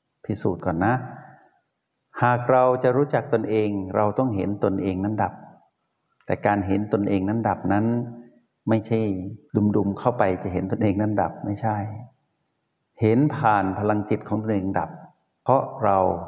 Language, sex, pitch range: Thai, male, 95-120 Hz